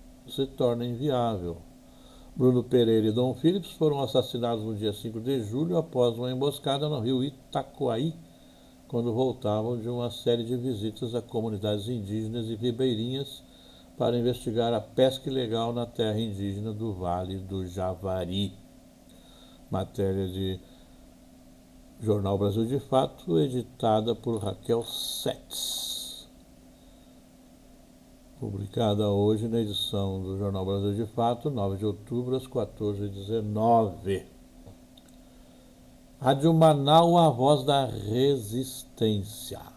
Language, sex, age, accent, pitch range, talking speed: Portuguese, male, 60-79, Brazilian, 100-130 Hz, 115 wpm